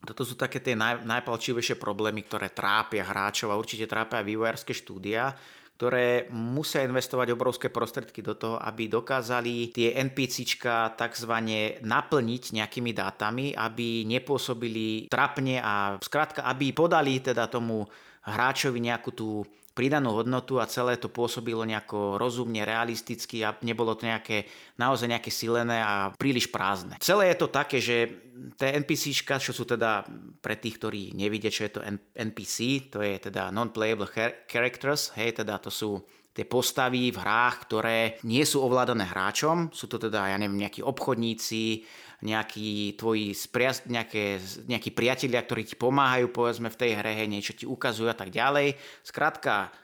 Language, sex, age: Slovak, male, 30-49